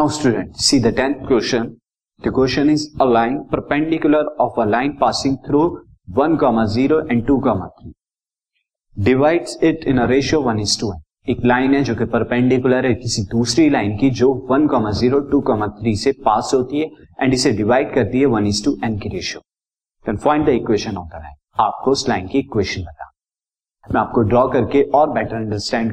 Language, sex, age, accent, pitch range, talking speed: Hindi, male, 30-49, native, 115-140 Hz, 105 wpm